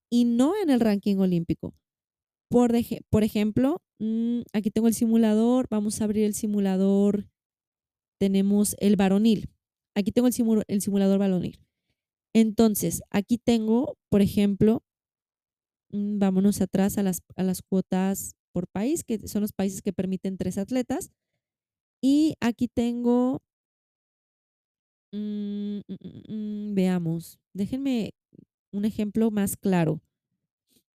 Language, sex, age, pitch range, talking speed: Spanish, female, 20-39, 195-230 Hz, 110 wpm